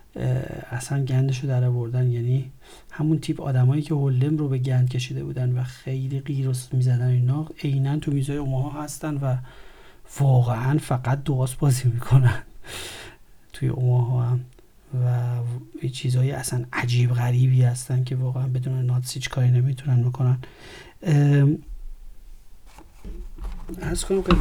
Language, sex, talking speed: Persian, male, 120 wpm